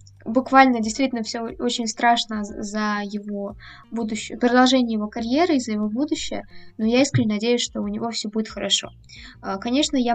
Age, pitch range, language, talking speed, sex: 20-39, 205-255 Hz, Russian, 160 wpm, female